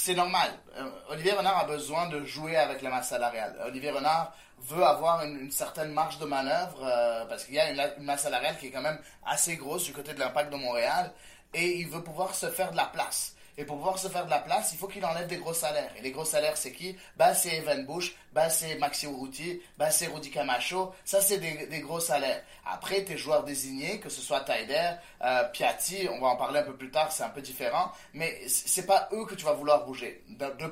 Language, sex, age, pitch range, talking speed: French, male, 30-49, 140-180 Hz, 245 wpm